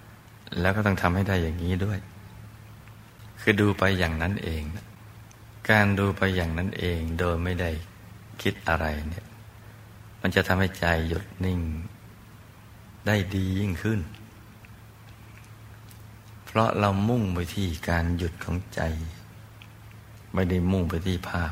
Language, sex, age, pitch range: Thai, male, 60-79, 90-110 Hz